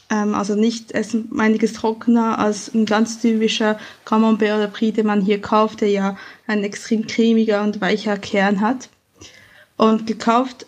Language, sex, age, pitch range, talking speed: German, female, 20-39, 215-250 Hz, 150 wpm